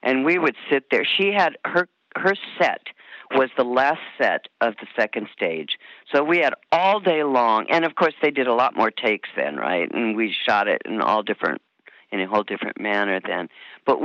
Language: English